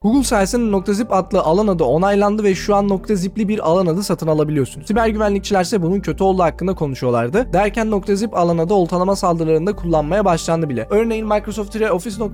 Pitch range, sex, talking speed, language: 165-205 Hz, male, 175 wpm, Turkish